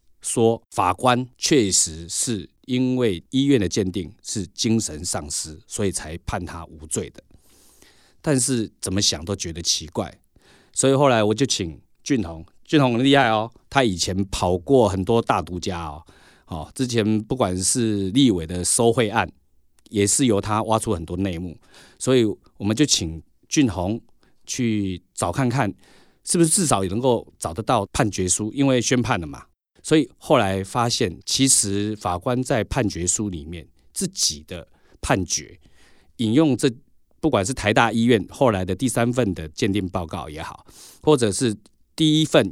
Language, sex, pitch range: Chinese, male, 90-125 Hz